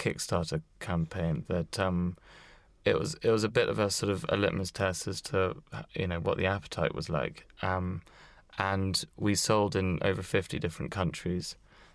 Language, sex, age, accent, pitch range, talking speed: English, male, 20-39, British, 95-105 Hz, 175 wpm